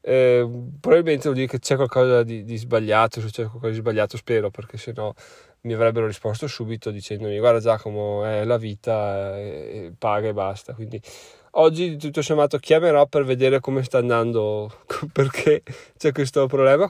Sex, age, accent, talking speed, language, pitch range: male, 20-39, native, 165 wpm, Italian, 115-140 Hz